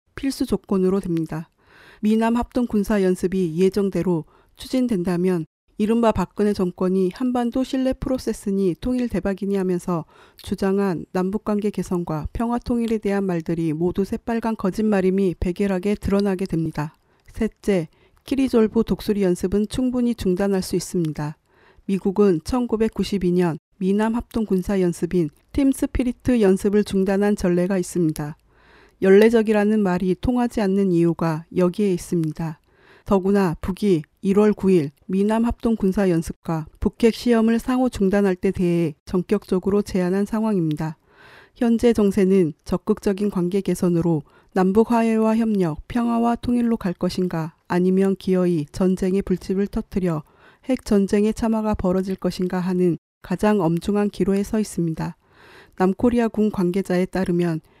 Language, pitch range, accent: Korean, 180-220 Hz, native